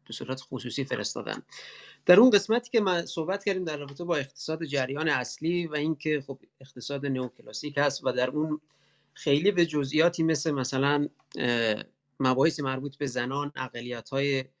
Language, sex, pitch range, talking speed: Persian, male, 130-155 Hz, 145 wpm